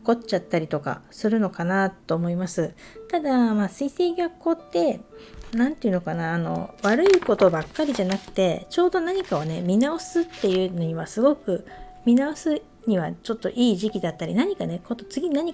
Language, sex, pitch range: Japanese, female, 190-290 Hz